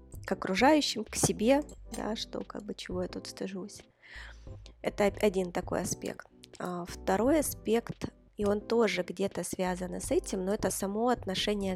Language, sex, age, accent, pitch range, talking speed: Ukrainian, female, 20-39, native, 180-215 Hz, 150 wpm